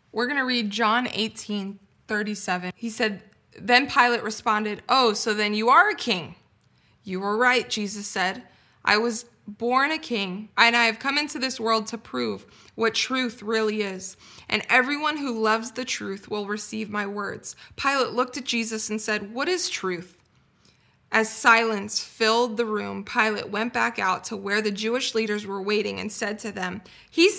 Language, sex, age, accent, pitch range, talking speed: English, female, 20-39, American, 210-255 Hz, 180 wpm